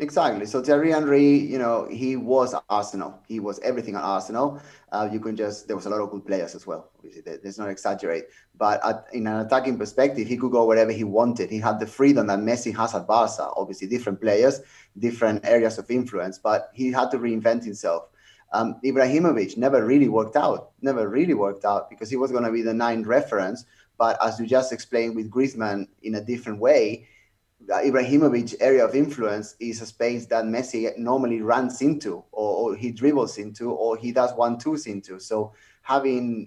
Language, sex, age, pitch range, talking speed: English, male, 30-49, 110-130 Hz, 195 wpm